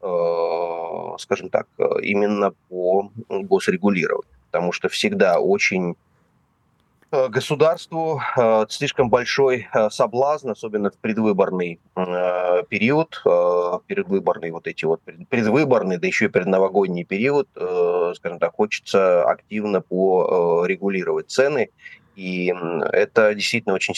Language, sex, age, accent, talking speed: Russian, male, 30-49, native, 95 wpm